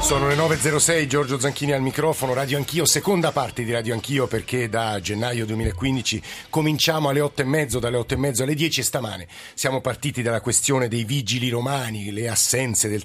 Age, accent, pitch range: 50-69, native, 110-135 Hz